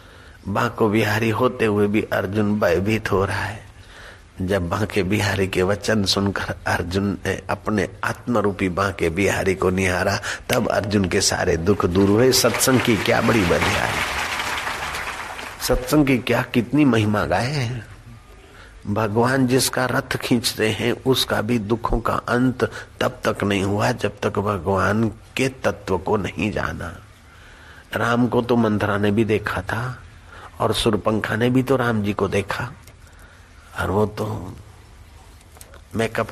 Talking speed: 140 wpm